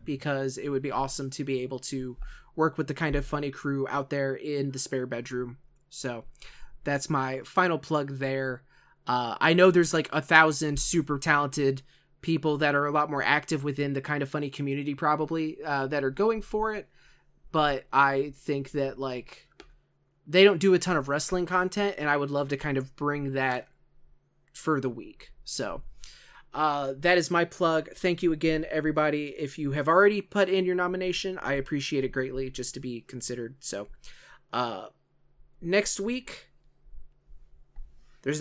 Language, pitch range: English, 135-160 Hz